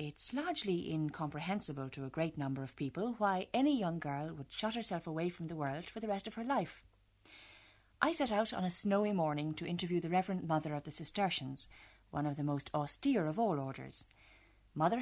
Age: 40-59